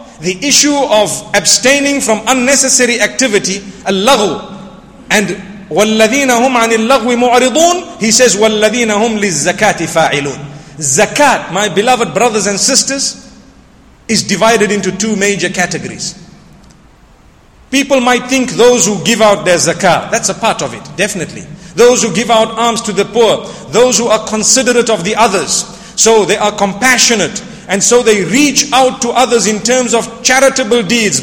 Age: 50-69